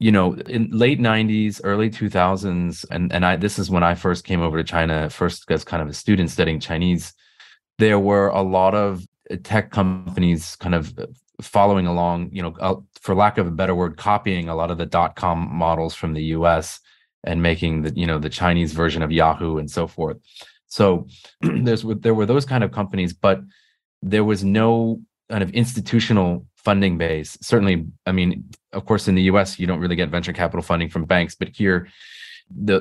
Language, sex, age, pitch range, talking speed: English, male, 30-49, 85-100 Hz, 200 wpm